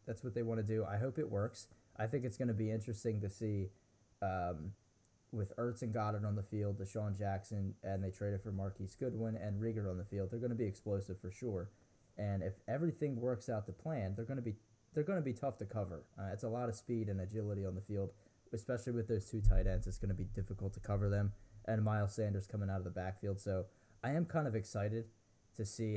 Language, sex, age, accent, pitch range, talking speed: English, male, 20-39, American, 100-115 Hz, 245 wpm